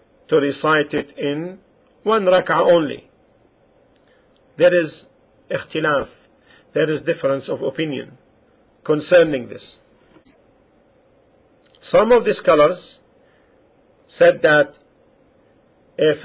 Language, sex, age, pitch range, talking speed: English, male, 50-69, 140-225 Hz, 90 wpm